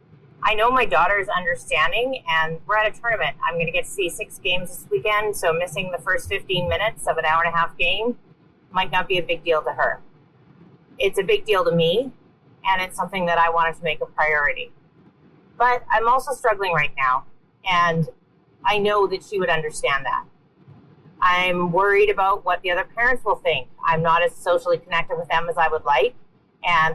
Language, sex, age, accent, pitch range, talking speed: English, female, 30-49, American, 160-205 Hz, 205 wpm